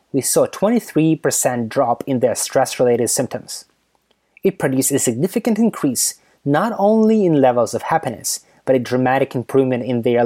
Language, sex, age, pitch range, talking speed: English, male, 20-39, 120-140 Hz, 150 wpm